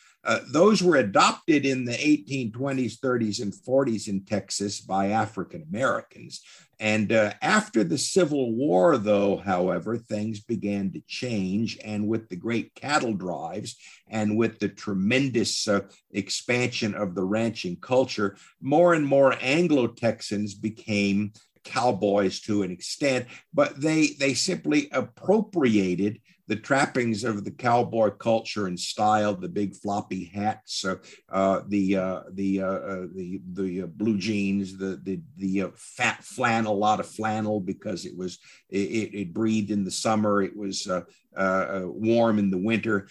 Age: 50-69